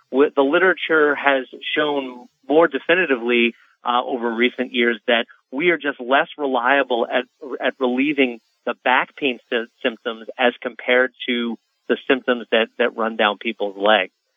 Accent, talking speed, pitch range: American, 150 wpm, 120-150 Hz